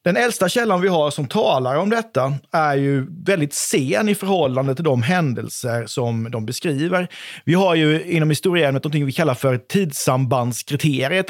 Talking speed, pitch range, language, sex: 165 wpm, 135-175 Hz, Swedish, male